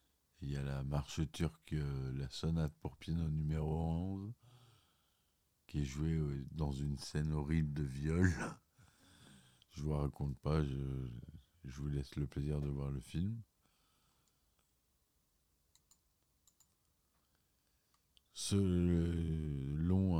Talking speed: 110 wpm